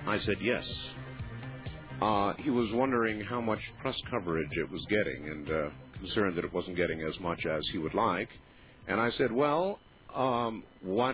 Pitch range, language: 95-130 Hz, English